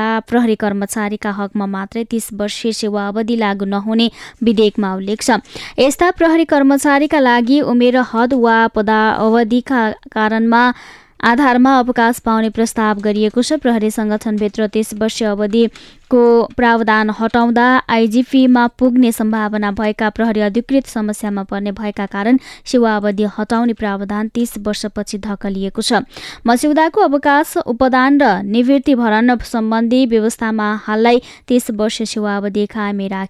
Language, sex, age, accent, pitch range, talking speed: English, female, 20-39, Indian, 215-255 Hz, 110 wpm